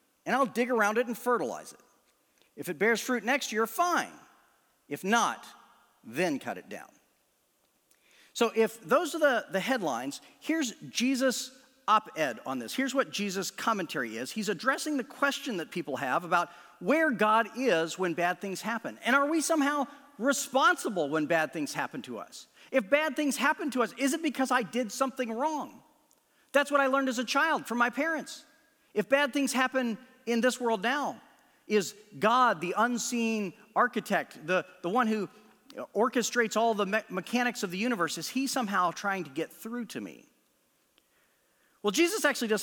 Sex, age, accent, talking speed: male, 40-59, American, 175 wpm